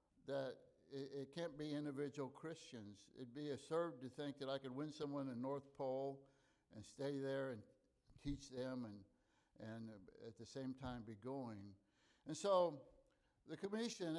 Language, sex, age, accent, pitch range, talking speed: English, male, 60-79, American, 130-170 Hz, 155 wpm